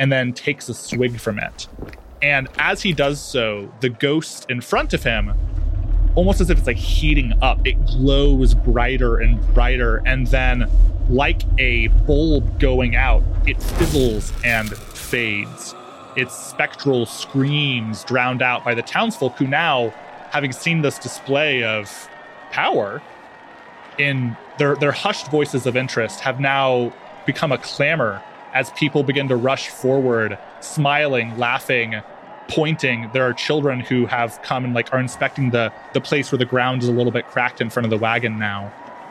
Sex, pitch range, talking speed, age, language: male, 115-140 Hz, 160 wpm, 20-39, English